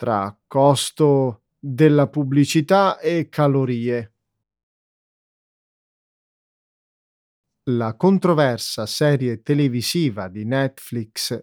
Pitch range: 120-160 Hz